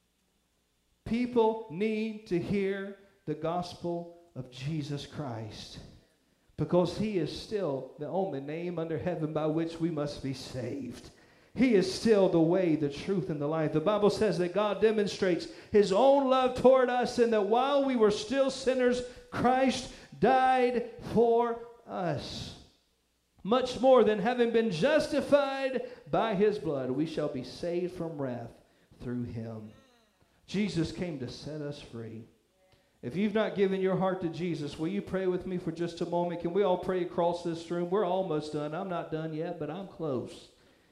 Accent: American